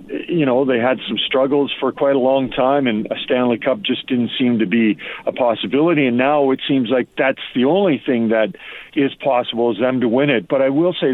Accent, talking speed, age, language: American, 230 wpm, 50-69, English